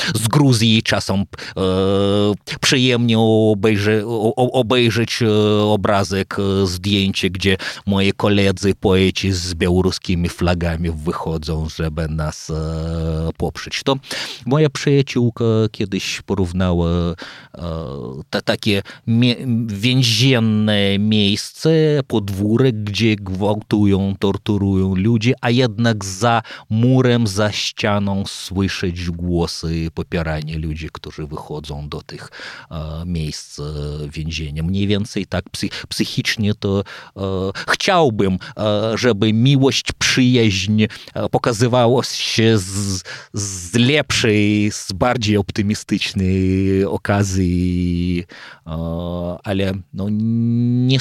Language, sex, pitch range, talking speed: Polish, male, 90-115 Hz, 80 wpm